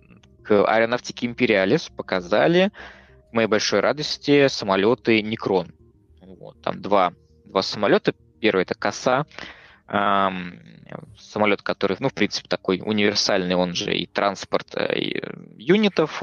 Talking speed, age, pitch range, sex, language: 120 wpm, 20-39, 90-115 Hz, male, Russian